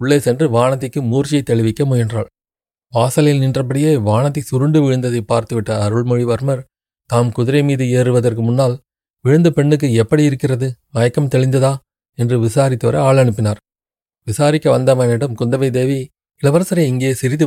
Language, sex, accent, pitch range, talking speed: Tamil, male, native, 115-140 Hz, 115 wpm